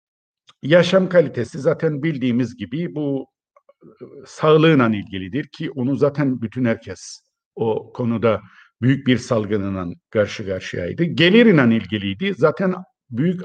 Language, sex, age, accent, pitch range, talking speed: Turkish, male, 50-69, native, 130-205 Hz, 105 wpm